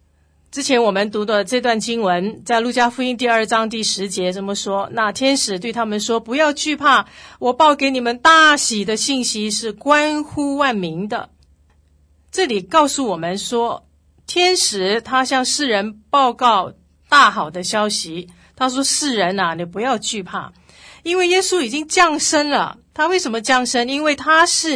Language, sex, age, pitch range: Chinese, female, 40-59, 200-290 Hz